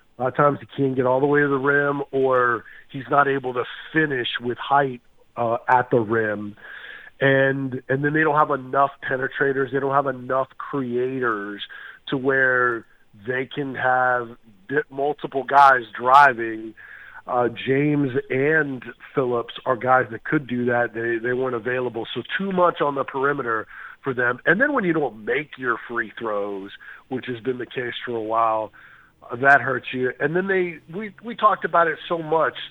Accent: American